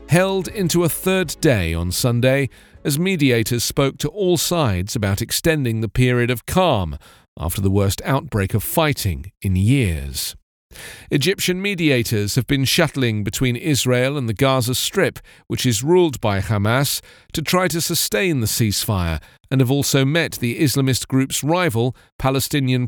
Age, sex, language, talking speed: 40-59, male, English, 150 wpm